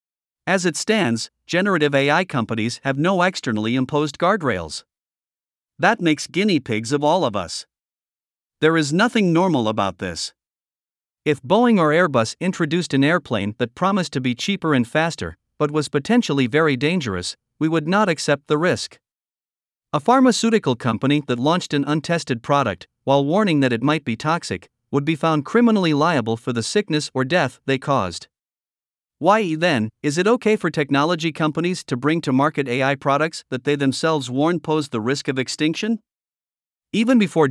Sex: male